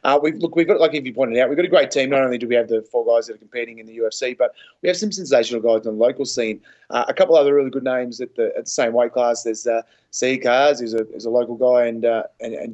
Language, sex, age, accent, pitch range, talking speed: English, male, 30-49, Australian, 115-135 Hz, 320 wpm